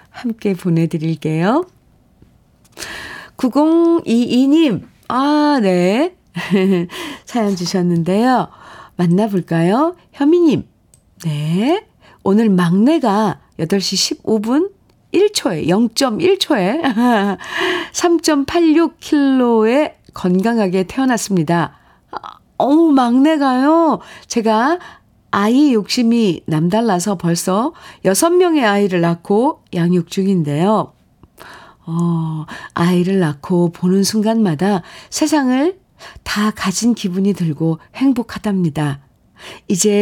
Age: 40-59